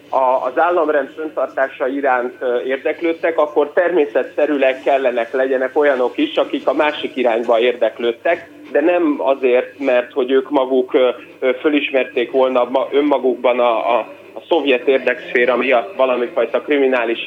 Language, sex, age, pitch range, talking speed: Hungarian, male, 30-49, 130-175 Hz, 115 wpm